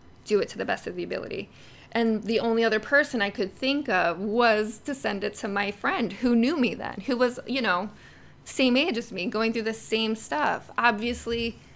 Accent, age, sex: American, 20-39, female